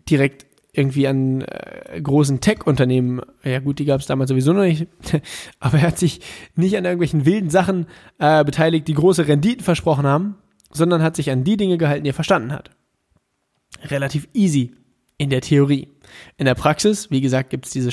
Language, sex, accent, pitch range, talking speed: German, male, German, 130-170 Hz, 185 wpm